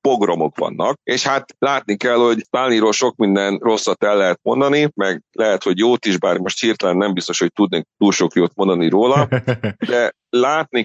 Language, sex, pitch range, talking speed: Hungarian, male, 105-125 Hz, 185 wpm